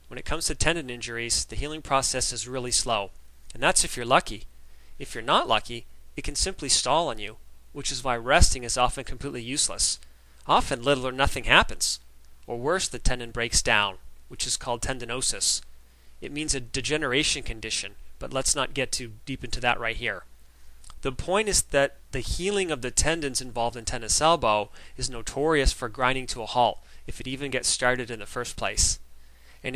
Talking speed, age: 190 wpm, 30-49